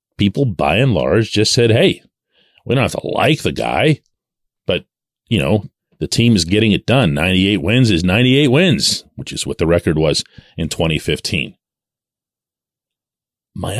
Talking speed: 160 wpm